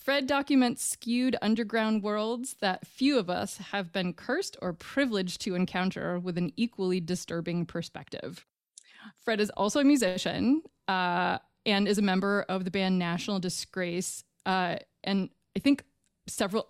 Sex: female